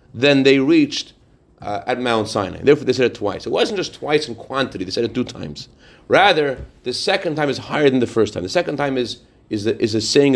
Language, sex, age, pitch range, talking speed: English, male, 30-49, 115-155 Hz, 250 wpm